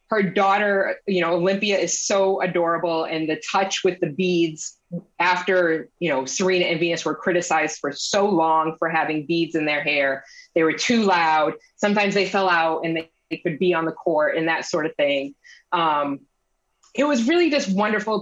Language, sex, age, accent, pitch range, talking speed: English, female, 20-39, American, 160-200 Hz, 190 wpm